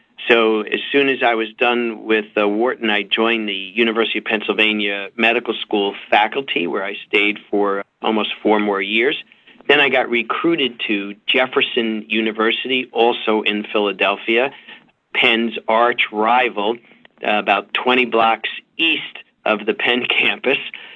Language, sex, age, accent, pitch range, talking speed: English, male, 40-59, American, 105-120 Hz, 140 wpm